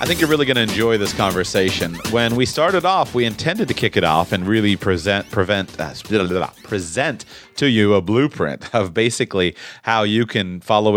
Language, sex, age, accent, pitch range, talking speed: English, male, 30-49, American, 90-115 Hz, 210 wpm